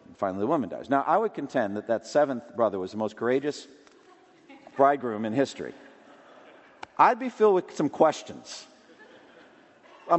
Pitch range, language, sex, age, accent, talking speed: 115-185 Hz, English, male, 50-69, American, 155 wpm